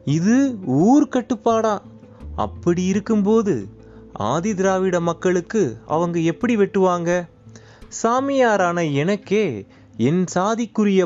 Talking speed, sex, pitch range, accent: 75 wpm, male, 140-200 Hz, native